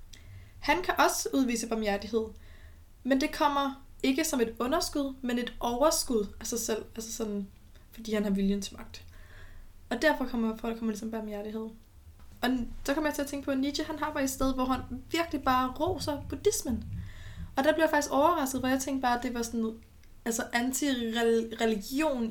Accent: native